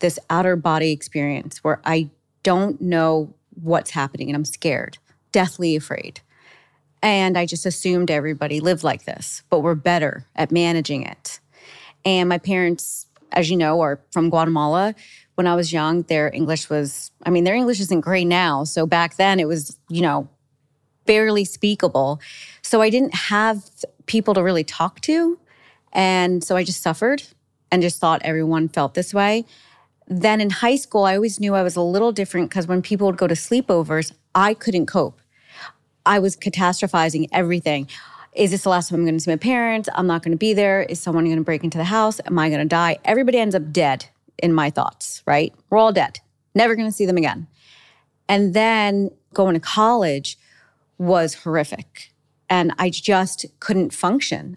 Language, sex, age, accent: English, female, 30-49, American